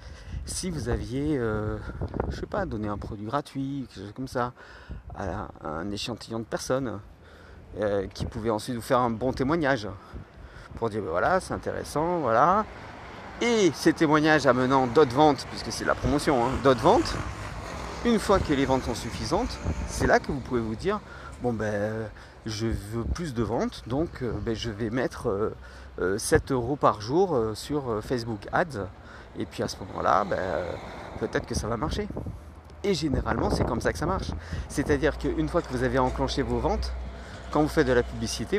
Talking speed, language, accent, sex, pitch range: 190 wpm, French, French, male, 110-155 Hz